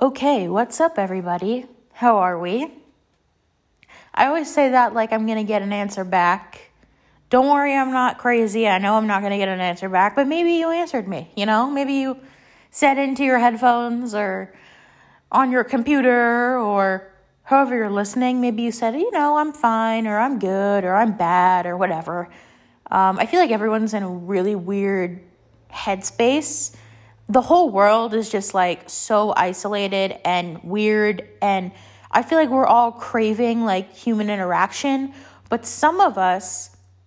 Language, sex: English, female